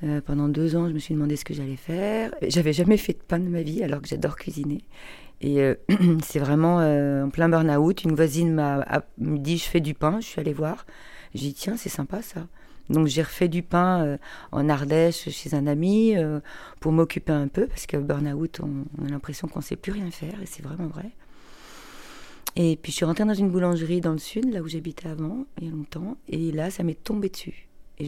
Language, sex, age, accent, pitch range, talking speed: French, female, 40-59, French, 150-175 Hz, 240 wpm